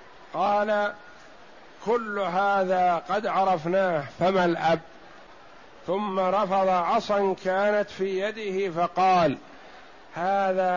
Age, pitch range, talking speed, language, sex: 50-69, 170-200 Hz, 85 wpm, Arabic, male